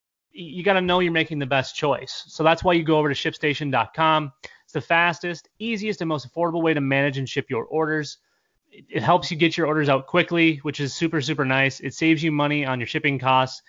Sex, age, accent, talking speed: male, 30-49, American, 230 wpm